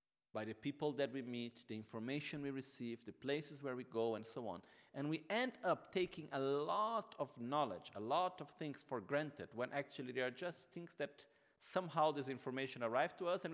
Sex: male